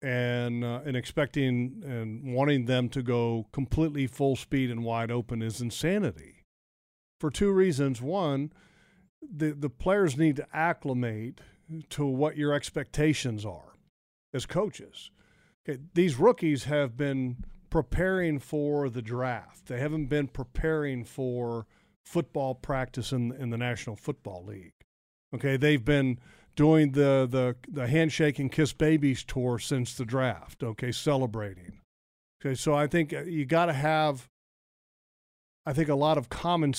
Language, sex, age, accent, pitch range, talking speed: English, male, 50-69, American, 125-155 Hz, 140 wpm